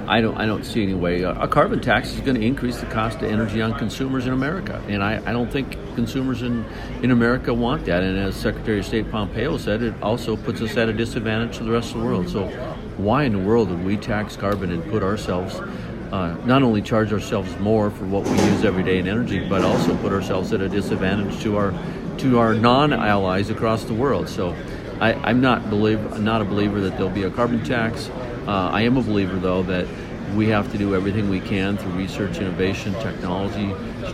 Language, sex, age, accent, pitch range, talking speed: English, male, 50-69, American, 95-115 Hz, 225 wpm